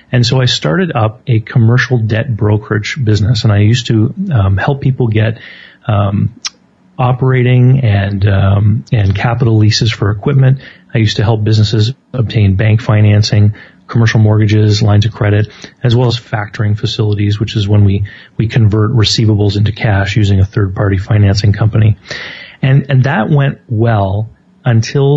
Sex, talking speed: male, 155 wpm